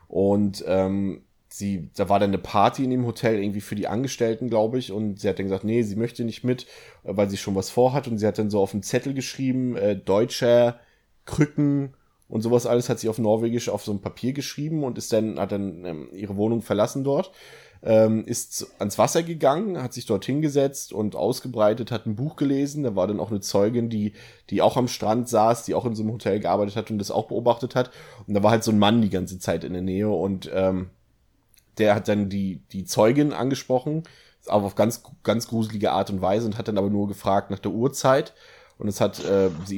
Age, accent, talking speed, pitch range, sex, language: 20-39, German, 225 wpm, 100-120 Hz, male, German